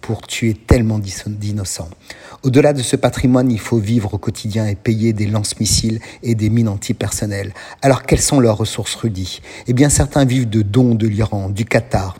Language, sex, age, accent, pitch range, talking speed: French, male, 50-69, French, 110-130 Hz, 180 wpm